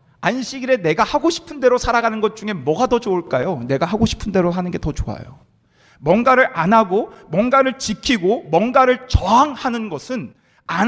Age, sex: 40-59, male